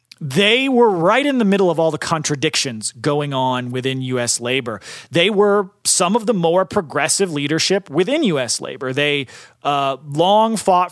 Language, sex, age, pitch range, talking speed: English, male, 30-49, 140-195 Hz, 165 wpm